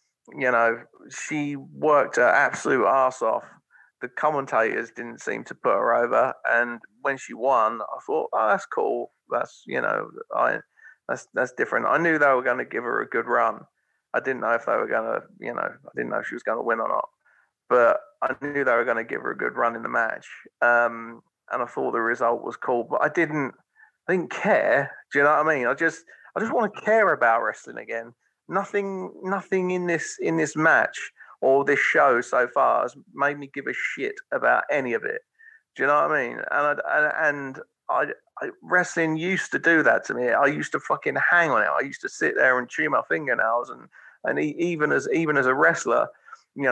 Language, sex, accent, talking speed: English, male, British, 225 wpm